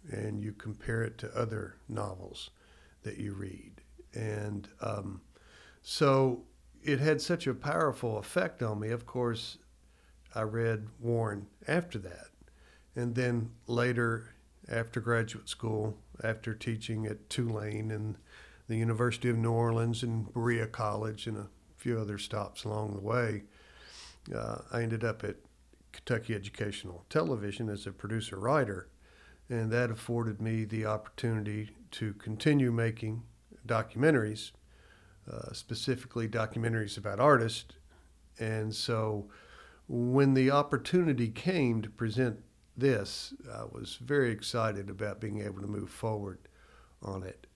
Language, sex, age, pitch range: English, male, 60-79, 105-120 Hz